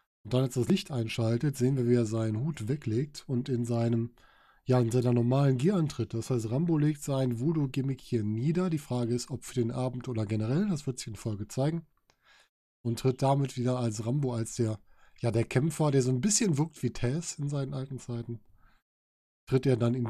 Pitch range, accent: 120-155 Hz, German